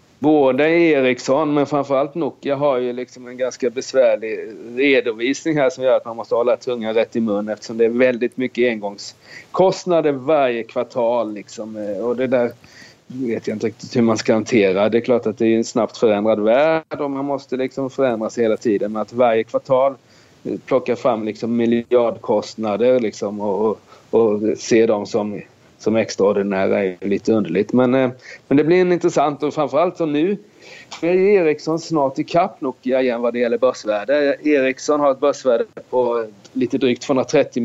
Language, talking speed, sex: Swedish, 175 wpm, male